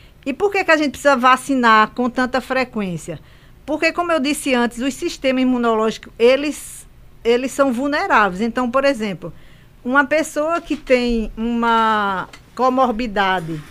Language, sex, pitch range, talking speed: Portuguese, female, 225-285 Hz, 140 wpm